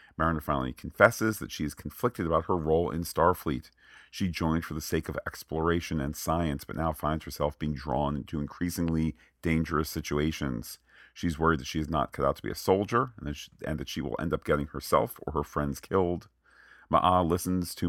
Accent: American